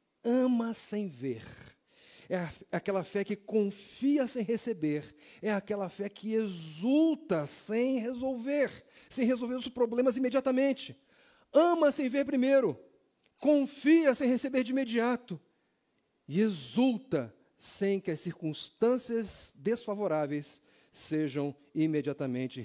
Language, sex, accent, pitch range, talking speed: Portuguese, male, Brazilian, 195-265 Hz, 105 wpm